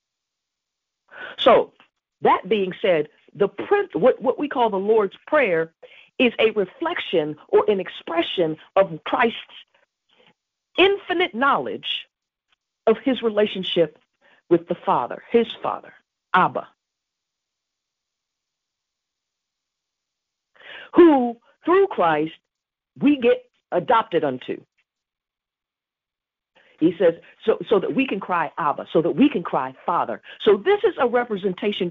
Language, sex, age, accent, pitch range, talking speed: English, female, 50-69, American, 175-290 Hz, 110 wpm